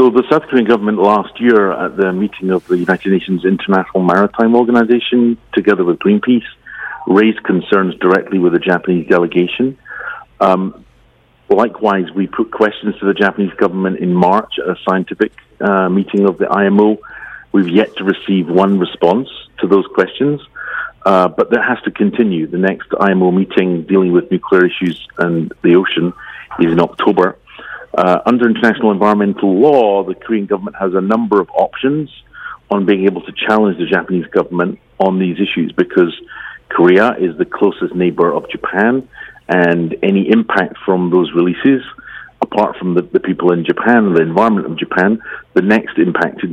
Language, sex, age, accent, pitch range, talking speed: English, male, 40-59, British, 90-110 Hz, 165 wpm